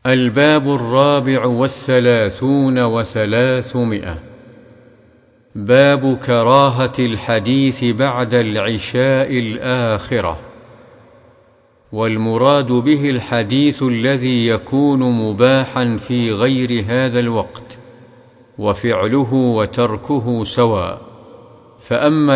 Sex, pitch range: male, 115-135 Hz